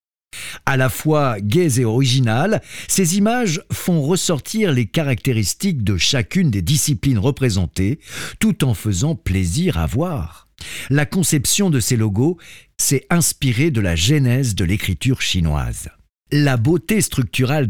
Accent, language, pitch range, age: French, French, 105-155 Hz, 50-69